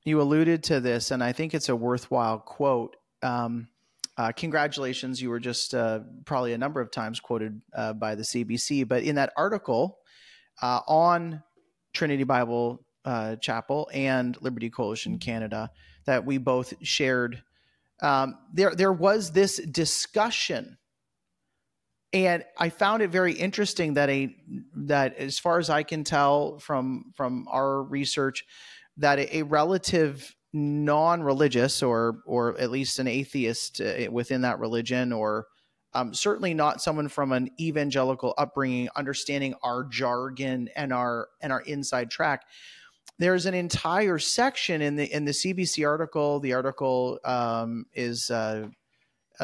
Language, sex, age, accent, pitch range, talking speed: English, male, 30-49, American, 120-150 Hz, 140 wpm